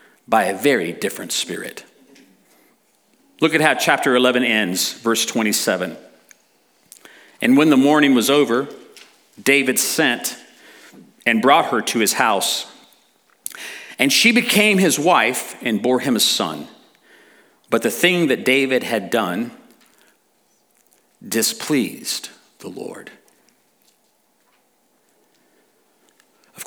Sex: male